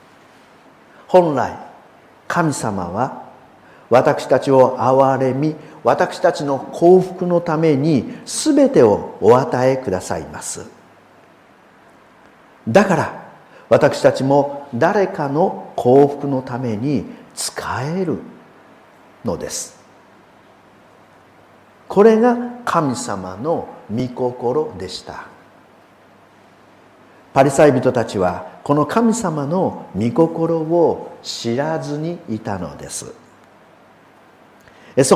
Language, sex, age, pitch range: Japanese, male, 50-69, 125-170 Hz